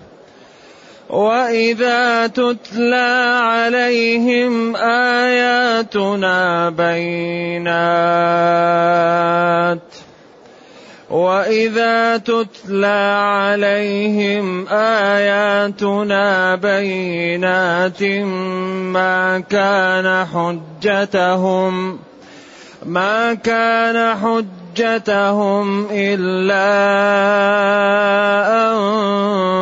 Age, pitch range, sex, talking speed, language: 30-49, 170-205 Hz, male, 30 wpm, Arabic